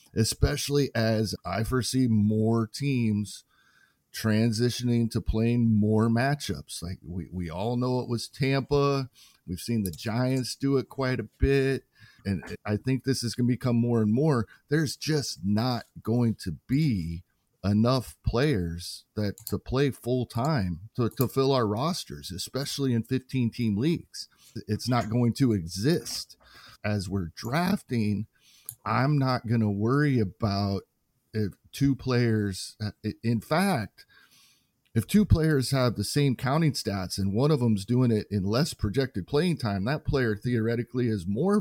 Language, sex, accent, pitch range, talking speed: English, male, American, 105-130 Hz, 150 wpm